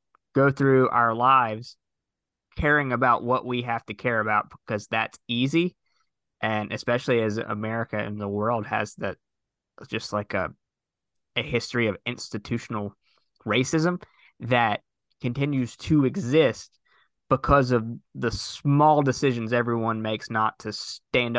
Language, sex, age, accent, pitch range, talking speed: English, male, 20-39, American, 110-125 Hz, 130 wpm